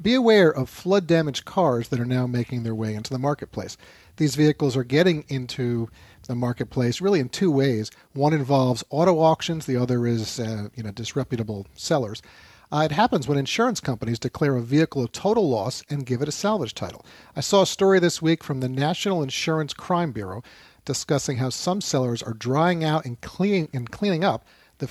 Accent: American